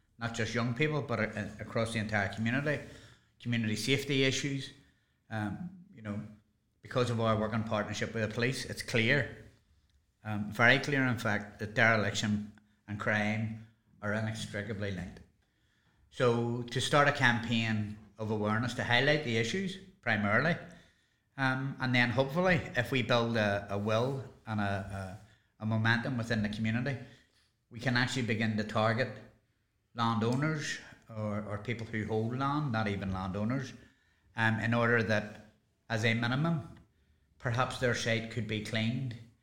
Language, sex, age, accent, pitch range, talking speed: English, male, 30-49, Irish, 105-120 Hz, 150 wpm